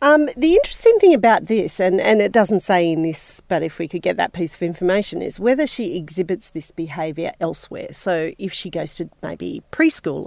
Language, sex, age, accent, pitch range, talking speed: English, female, 40-59, Australian, 165-225 Hz, 210 wpm